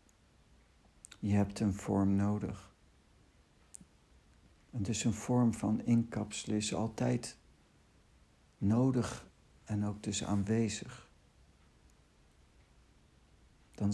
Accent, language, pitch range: Dutch, Dutch, 95-115 Hz